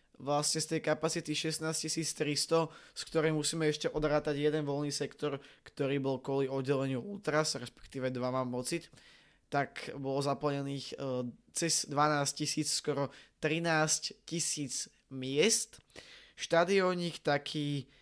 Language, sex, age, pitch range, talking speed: Slovak, male, 20-39, 140-170 Hz, 115 wpm